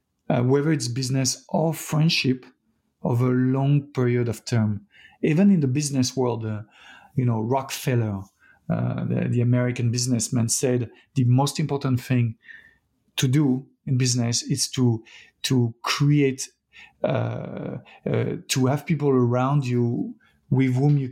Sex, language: male, English